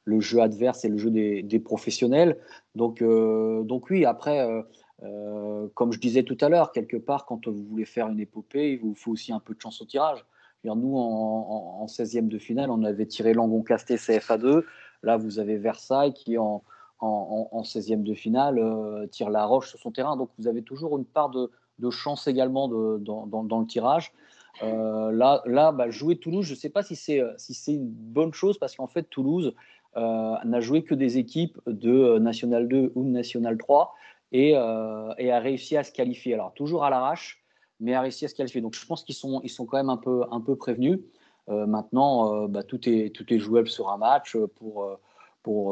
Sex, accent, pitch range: male, French, 110-130 Hz